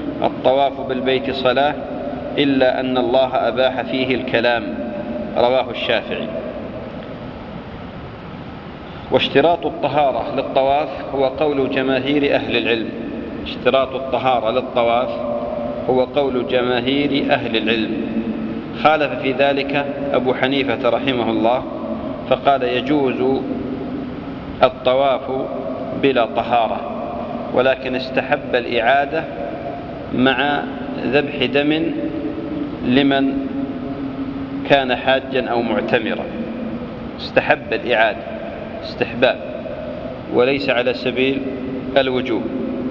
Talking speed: 80 wpm